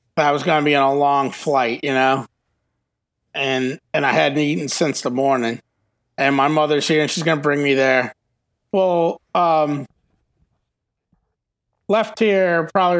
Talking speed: 150 wpm